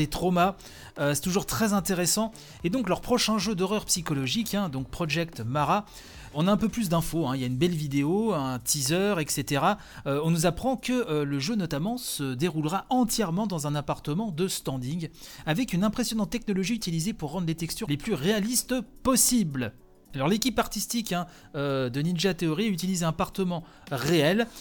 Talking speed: 185 wpm